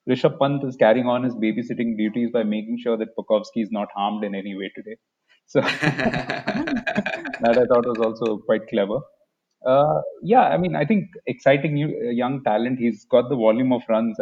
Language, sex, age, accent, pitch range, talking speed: English, male, 30-49, Indian, 110-145 Hz, 190 wpm